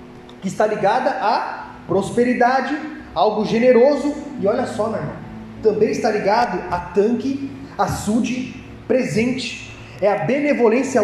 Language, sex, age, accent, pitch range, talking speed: Portuguese, male, 30-49, Brazilian, 180-230 Hz, 115 wpm